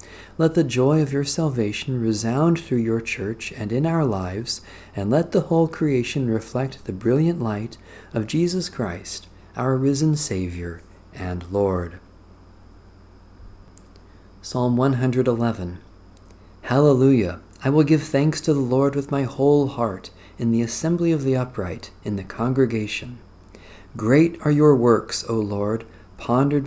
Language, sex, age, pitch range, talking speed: English, male, 40-59, 100-140 Hz, 135 wpm